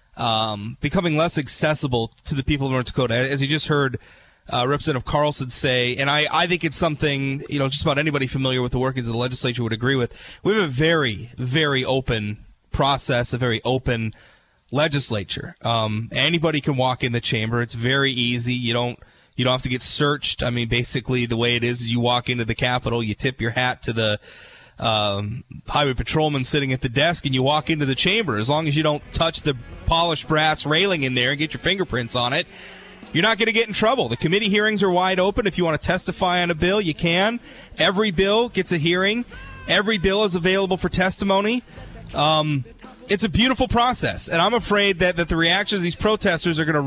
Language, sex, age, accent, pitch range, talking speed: English, male, 30-49, American, 125-180 Hz, 215 wpm